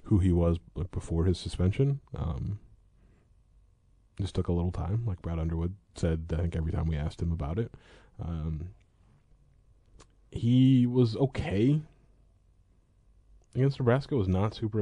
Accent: American